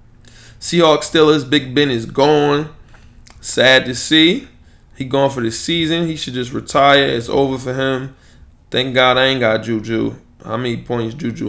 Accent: American